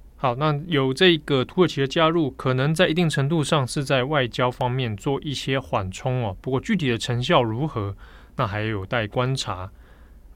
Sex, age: male, 20-39